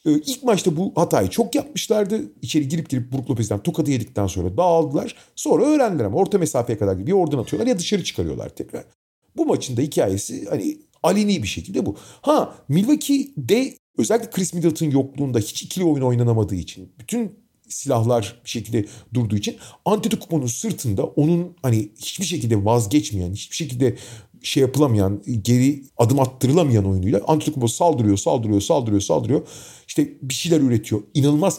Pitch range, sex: 110-170 Hz, male